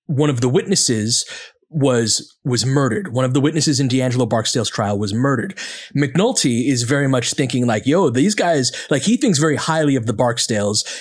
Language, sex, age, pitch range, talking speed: English, male, 30-49, 125-155 Hz, 185 wpm